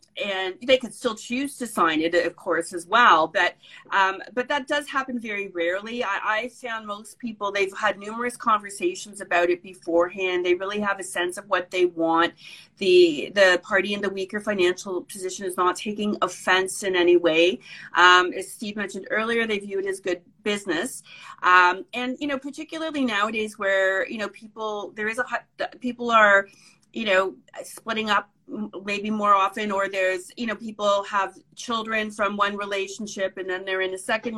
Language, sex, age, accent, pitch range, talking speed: English, female, 40-59, American, 185-215 Hz, 185 wpm